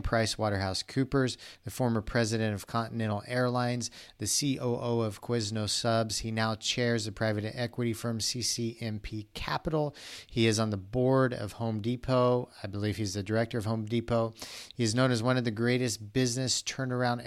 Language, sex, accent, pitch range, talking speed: English, male, American, 105-115 Hz, 170 wpm